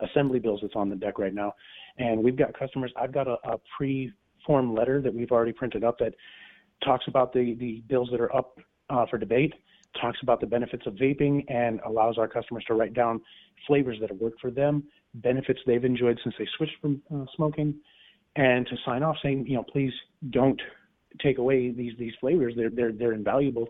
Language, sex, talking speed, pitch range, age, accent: English, male, 205 wpm, 115-130 Hz, 30-49, American